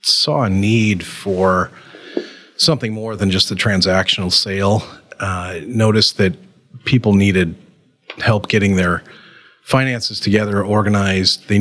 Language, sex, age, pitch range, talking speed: English, male, 40-59, 95-115 Hz, 120 wpm